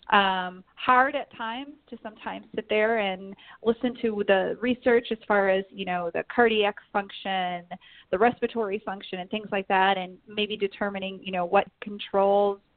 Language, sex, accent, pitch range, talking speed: English, female, American, 195-235 Hz, 165 wpm